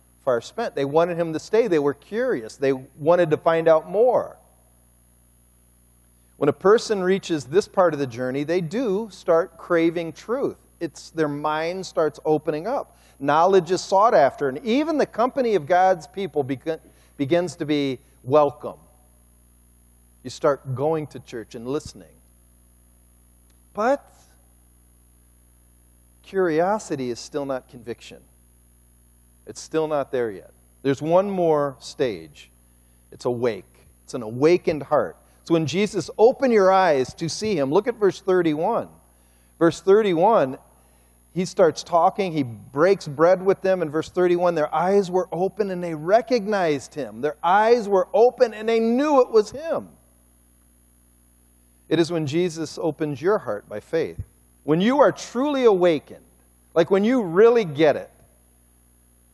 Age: 40-59